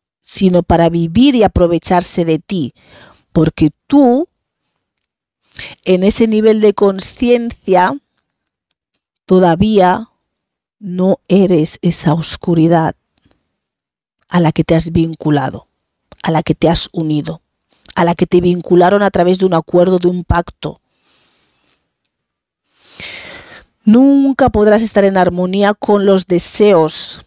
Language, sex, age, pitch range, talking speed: Spanish, female, 40-59, 165-200 Hz, 115 wpm